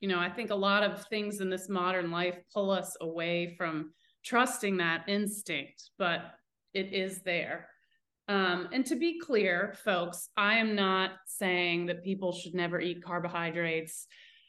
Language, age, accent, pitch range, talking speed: English, 30-49, American, 175-210 Hz, 160 wpm